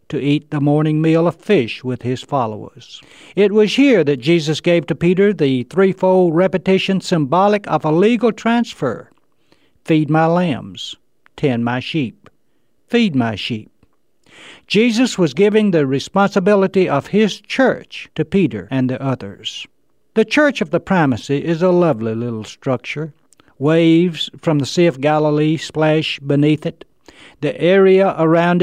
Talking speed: 145 wpm